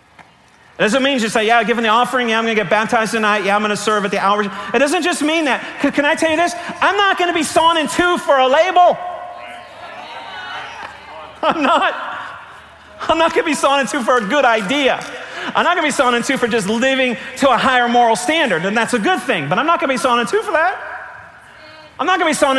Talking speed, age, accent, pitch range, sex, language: 265 wpm, 40-59, American, 220-315 Hz, male, English